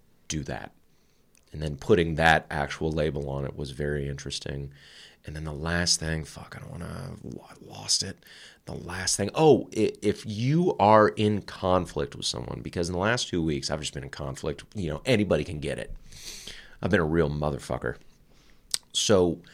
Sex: male